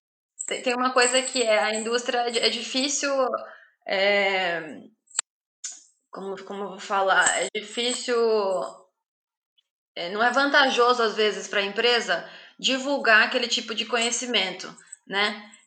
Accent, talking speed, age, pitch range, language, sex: Brazilian, 115 wpm, 20-39, 195-245 Hz, Portuguese, female